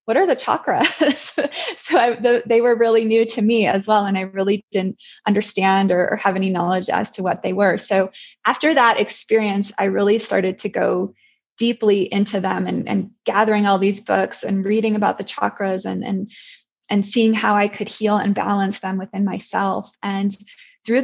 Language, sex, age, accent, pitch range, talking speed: English, female, 20-39, American, 195-225 Hz, 195 wpm